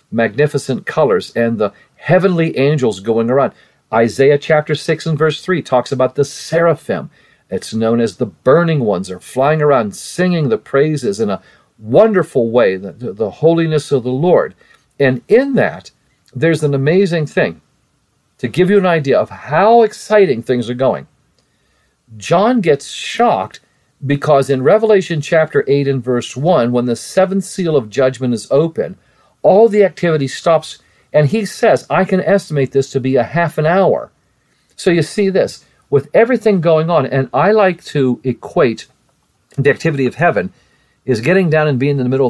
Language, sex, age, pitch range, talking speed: English, male, 50-69, 125-170 Hz, 170 wpm